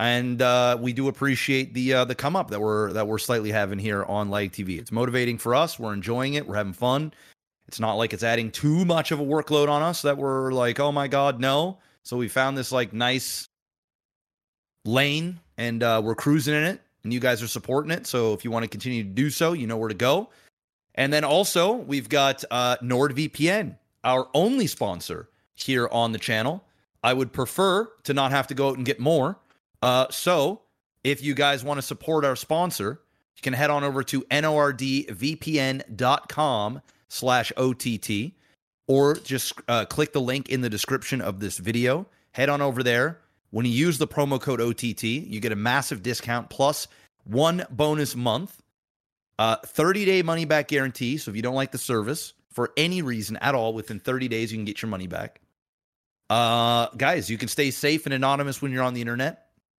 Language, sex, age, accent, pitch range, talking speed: English, male, 30-49, American, 115-145 Hz, 200 wpm